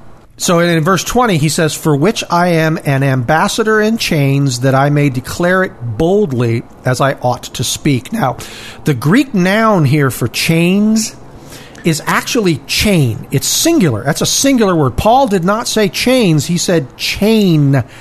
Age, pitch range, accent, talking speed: 40-59, 135-185 Hz, American, 165 wpm